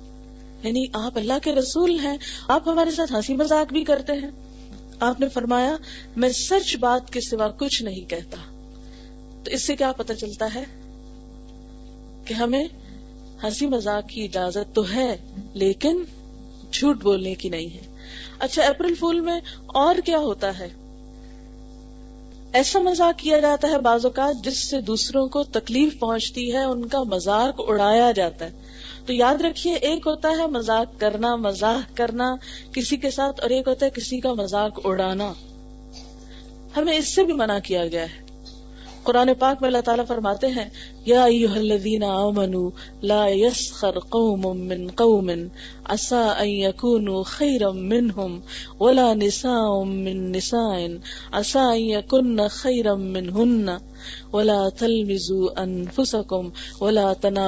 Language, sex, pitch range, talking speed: Urdu, female, 200-260 Hz, 115 wpm